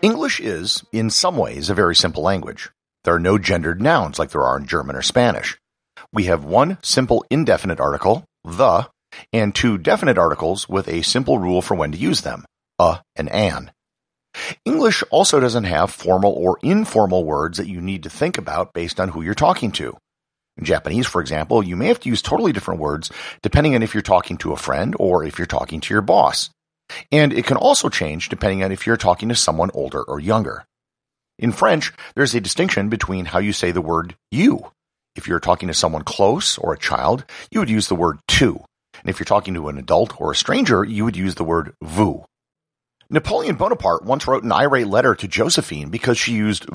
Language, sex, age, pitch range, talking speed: English, male, 50-69, 90-120 Hz, 205 wpm